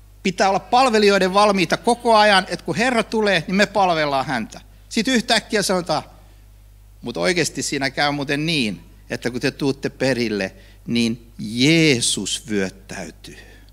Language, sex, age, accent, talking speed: Finnish, male, 60-79, native, 135 wpm